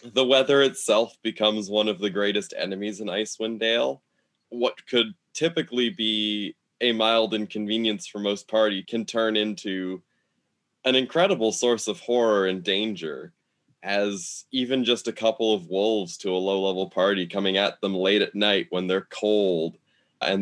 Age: 20-39